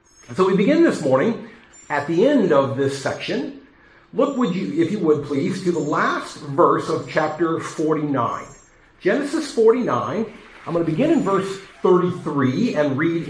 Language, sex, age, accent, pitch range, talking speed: English, male, 50-69, American, 150-225 Hz, 160 wpm